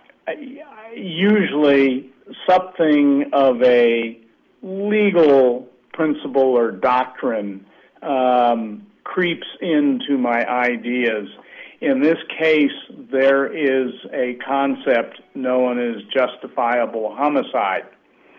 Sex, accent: male, American